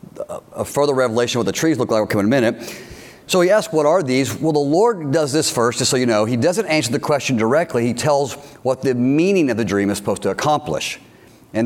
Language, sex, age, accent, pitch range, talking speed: English, male, 50-69, American, 115-150 Hz, 250 wpm